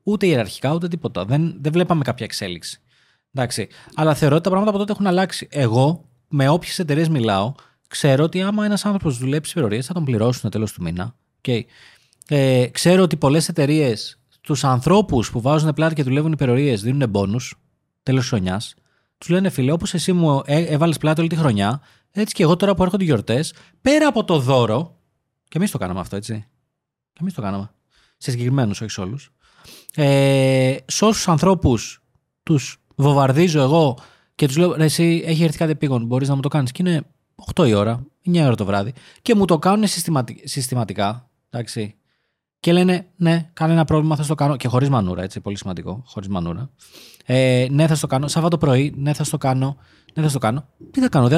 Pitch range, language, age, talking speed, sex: 125-170 Hz, Greek, 30-49, 190 wpm, male